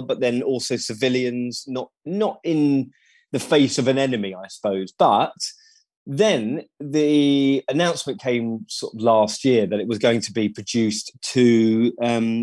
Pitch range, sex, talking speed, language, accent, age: 110-140 Hz, male, 155 wpm, English, British, 20-39